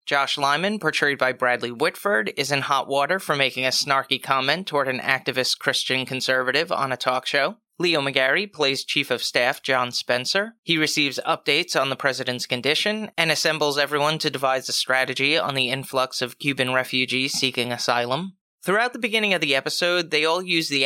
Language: English